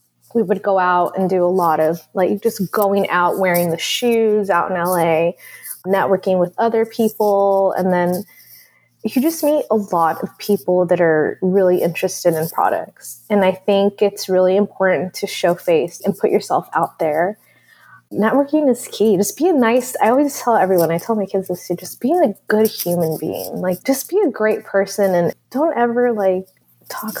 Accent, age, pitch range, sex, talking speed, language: American, 20-39, 180-240 Hz, female, 190 wpm, English